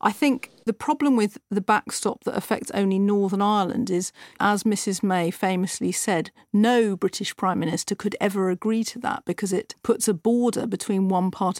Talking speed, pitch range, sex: 180 wpm, 195-230 Hz, female